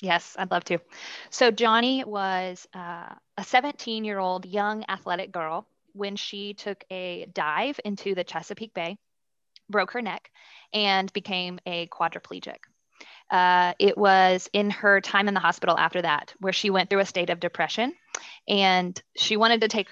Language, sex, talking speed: English, female, 165 wpm